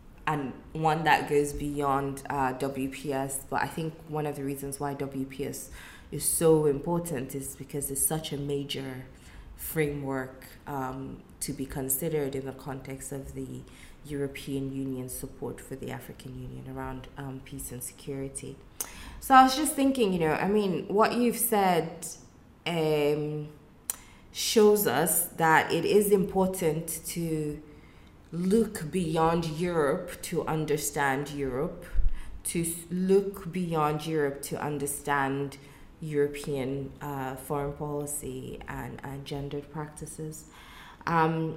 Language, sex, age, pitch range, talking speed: English, female, 20-39, 135-165 Hz, 125 wpm